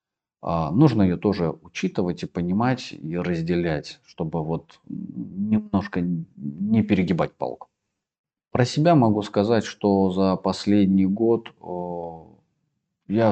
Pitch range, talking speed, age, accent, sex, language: 85-105 Hz, 105 wpm, 30-49, native, male, Russian